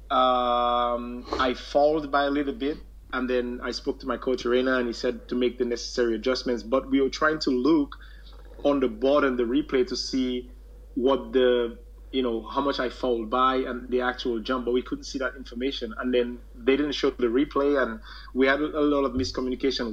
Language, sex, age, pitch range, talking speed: English, male, 30-49, 120-135 Hz, 210 wpm